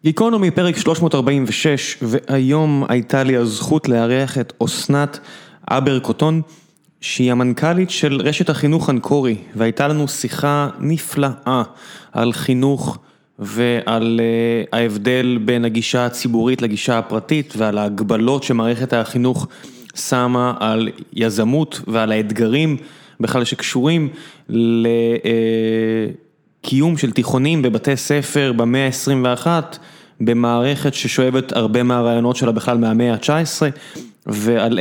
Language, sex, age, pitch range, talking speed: Hebrew, male, 20-39, 115-145 Hz, 105 wpm